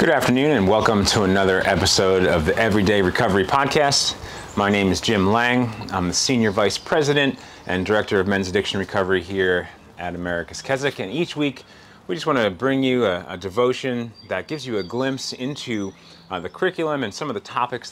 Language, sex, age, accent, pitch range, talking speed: English, male, 30-49, American, 95-125 Hz, 195 wpm